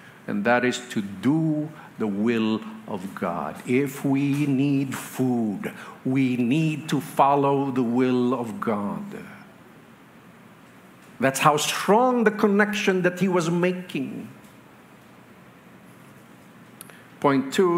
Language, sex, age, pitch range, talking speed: English, male, 50-69, 130-185 Hz, 110 wpm